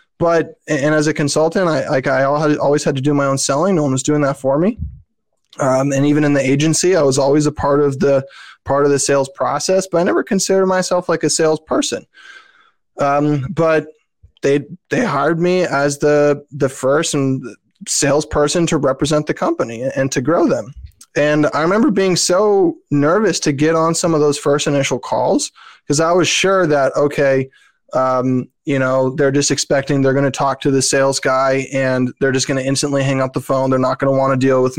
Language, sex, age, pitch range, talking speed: English, male, 20-39, 135-175 Hz, 210 wpm